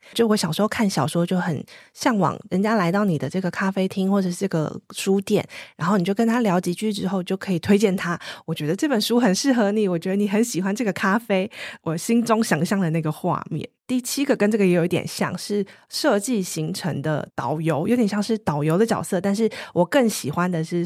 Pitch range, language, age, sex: 165-215 Hz, Chinese, 20-39, female